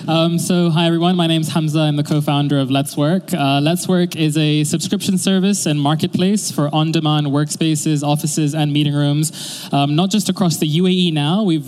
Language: English